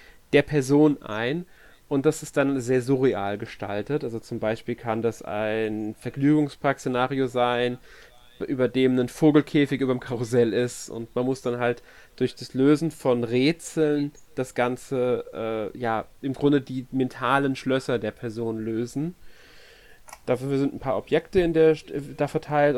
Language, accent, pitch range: German, German, 120-145 Hz